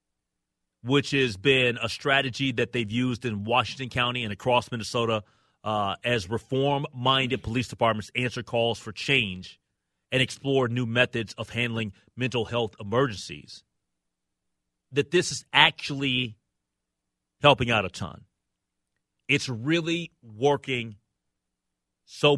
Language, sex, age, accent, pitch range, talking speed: English, male, 30-49, American, 100-160 Hz, 120 wpm